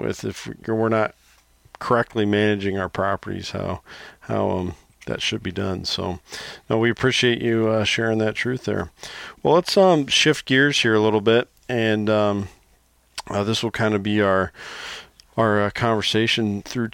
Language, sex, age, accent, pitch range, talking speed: English, male, 40-59, American, 100-115 Hz, 165 wpm